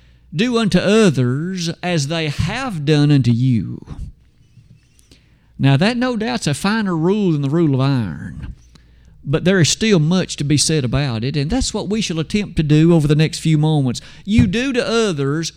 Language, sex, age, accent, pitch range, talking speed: English, male, 50-69, American, 130-190 Hz, 185 wpm